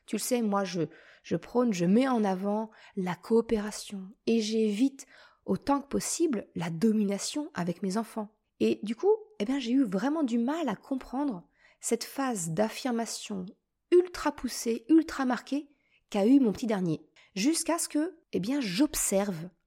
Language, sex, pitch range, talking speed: French, female, 205-280 Hz, 160 wpm